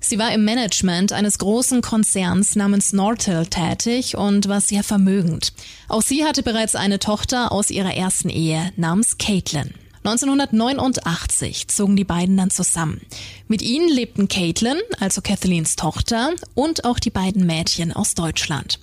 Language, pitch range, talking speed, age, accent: German, 180-230 Hz, 145 wpm, 20-39, German